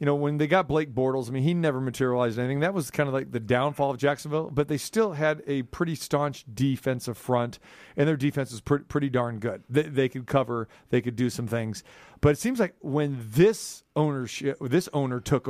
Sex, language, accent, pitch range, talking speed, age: male, English, American, 130-160 Hz, 225 wpm, 40-59